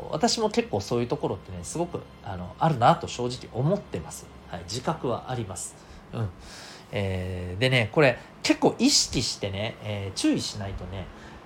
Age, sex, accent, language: 40-59, male, native, Japanese